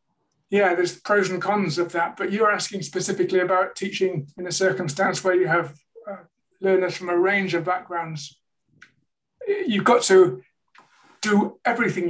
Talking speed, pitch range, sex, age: 160 wpm, 170-190 Hz, male, 30-49